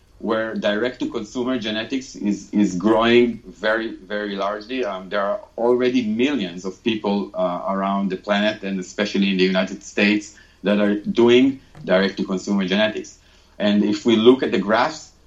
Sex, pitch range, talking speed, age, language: male, 100-125 Hz, 150 wpm, 40-59, English